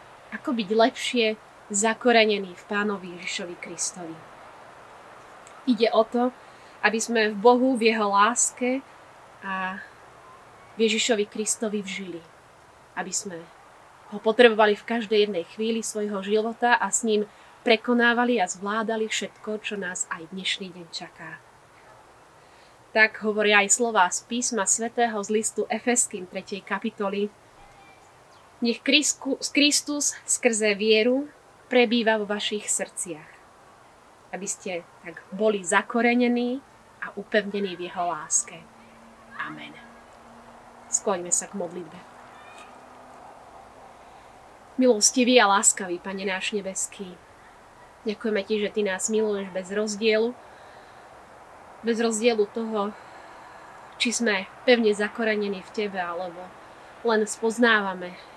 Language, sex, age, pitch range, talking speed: Slovak, female, 20-39, 195-235 Hz, 110 wpm